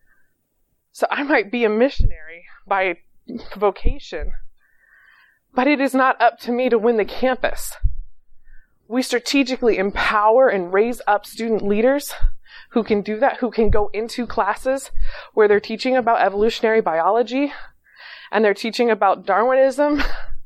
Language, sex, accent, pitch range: English, female, American, 205-255 Hz